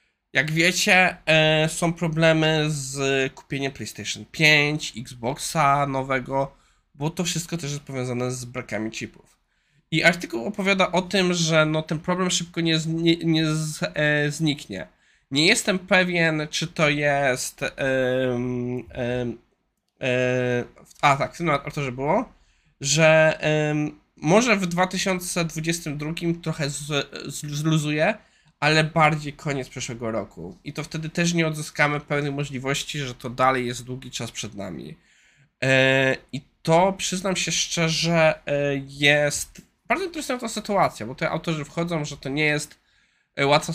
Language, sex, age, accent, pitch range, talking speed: Polish, male, 20-39, native, 135-165 Hz, 130 wpm